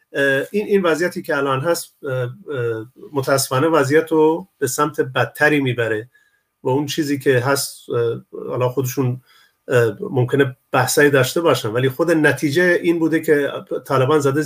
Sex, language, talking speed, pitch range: male, Persian, 130 wpm, 135-160 Hz